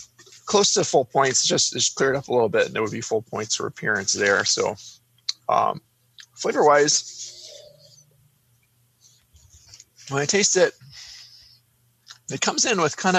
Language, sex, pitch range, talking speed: English, male, 120-155 Hz, 150 wpm